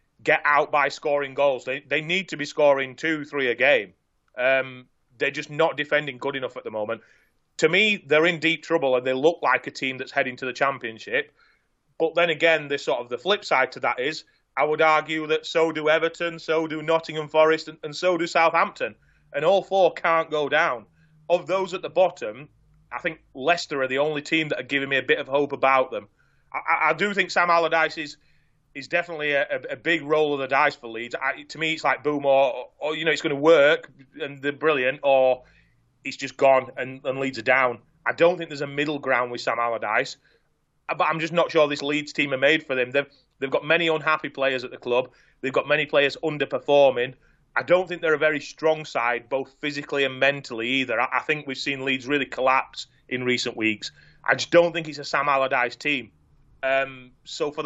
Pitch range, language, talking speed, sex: 135-160 Hz, English, 225 wpm, male